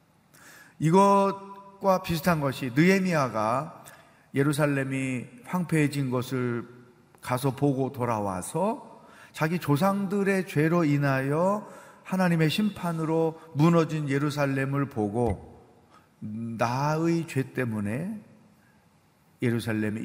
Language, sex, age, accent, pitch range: Korean, male, 40-59, native, 120-160 Hz